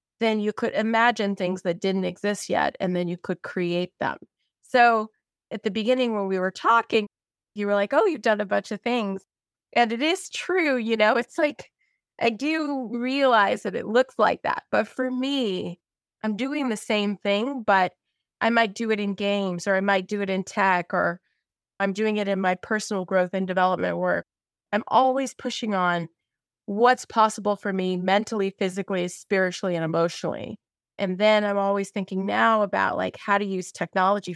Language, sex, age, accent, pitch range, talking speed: English, female, 20-39, American, 185-225 Hz, 185 wpm